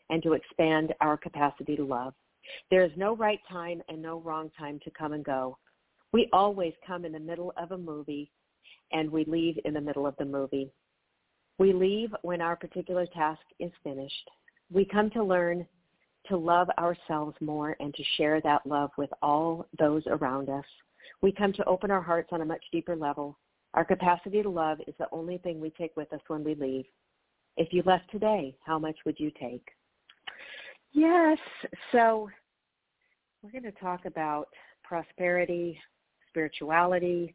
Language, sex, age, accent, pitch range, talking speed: English, female, 50-69, American, 155-180 Hz, 175 wpm